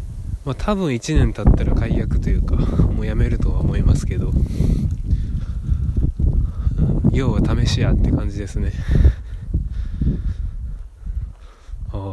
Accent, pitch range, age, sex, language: native, 85-110 Hz, 20-39, male, Japanese